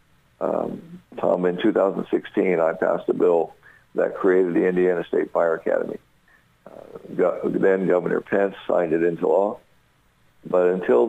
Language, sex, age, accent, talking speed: English, male, 60-79, American, 135 wpm